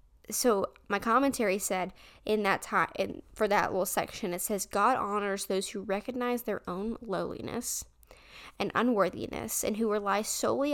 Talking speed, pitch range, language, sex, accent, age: 155 wpm, 185-225 Hz, English, female, American, 10-29